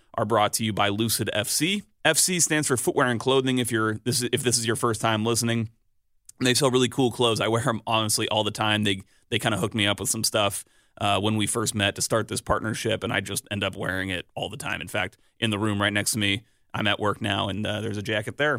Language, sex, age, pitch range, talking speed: English, male, 30-49, 105-125 Hz, 270 wpm